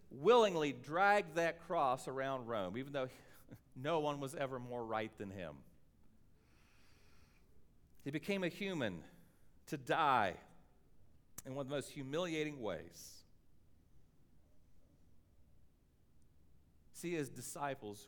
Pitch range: 80-120 Hz